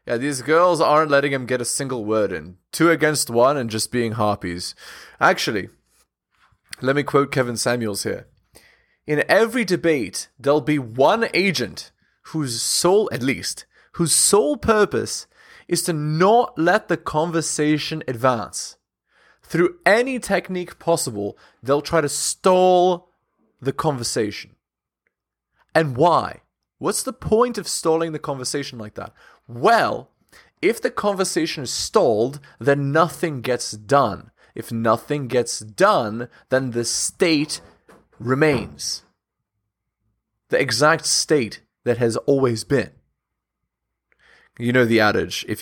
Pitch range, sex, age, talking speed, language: 115-165 Hz, male, 20-39, 130 wpm, English